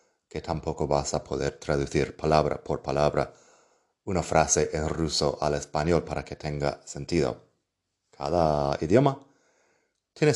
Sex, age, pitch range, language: male, 30-49, 75-95 Hz, Spanish